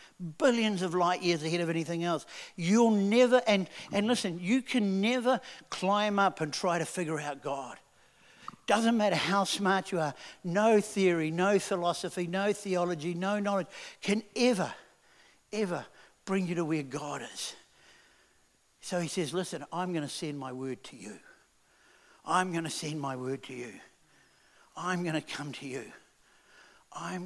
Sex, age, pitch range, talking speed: male, 60-79, 150-190 Hz, 165 wpm